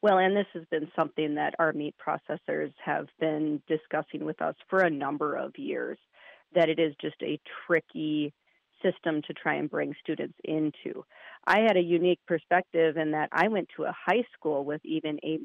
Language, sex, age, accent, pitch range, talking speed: English, female, 30-49, American, 155-180 Hz, 190 wpm